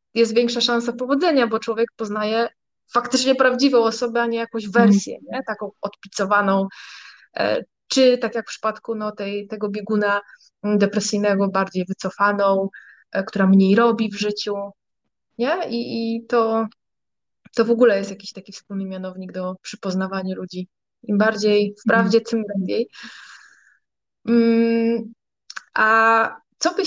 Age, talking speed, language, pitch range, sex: 20-39, 130 wpm, Polish, 205-235 Hz, female